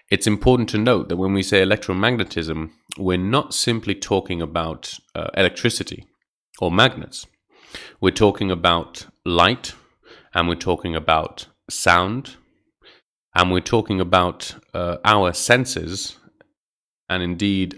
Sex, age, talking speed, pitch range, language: male, 30-49, 120 wpm, 85-100 Hz, English